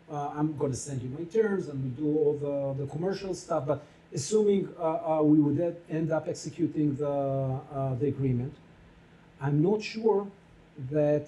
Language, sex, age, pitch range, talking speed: English, male, 50-69, 145-170 Hz, 180 wpm